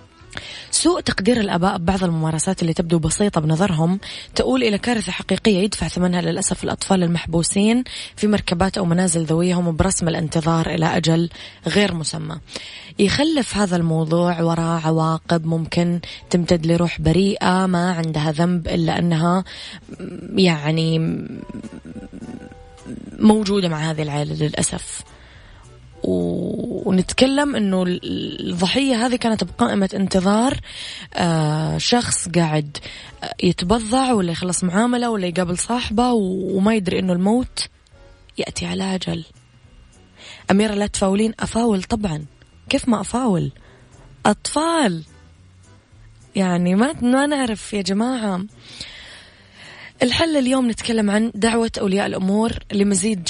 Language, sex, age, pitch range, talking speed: English, female, 20-39, 160-210 Hz, 105 wpm